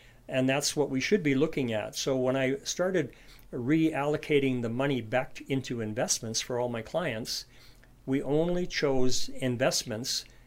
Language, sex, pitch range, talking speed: English, male, 120-140 Hz, 150 wpm